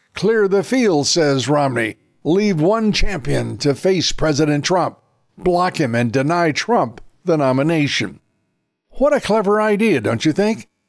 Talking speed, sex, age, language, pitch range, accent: 145 wpm, male, 60-79, English, 140-190 Hz, American